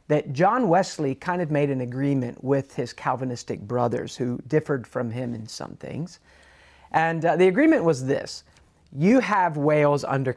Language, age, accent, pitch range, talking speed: English, 40-59, American, 125-165 Hz, 170 wpm